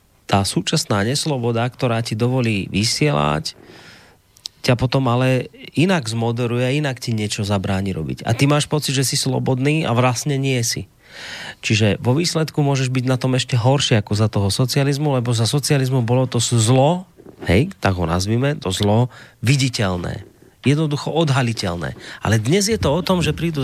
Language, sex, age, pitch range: Slovak, male, 30-49, 115-165 Hz